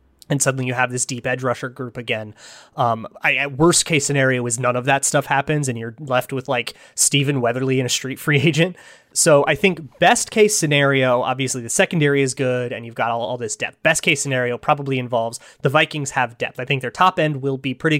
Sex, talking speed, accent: male, 230 wpm, American